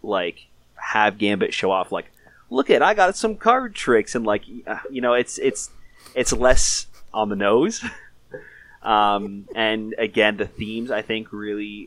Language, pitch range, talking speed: English, 95-115 Hz, 160 wpm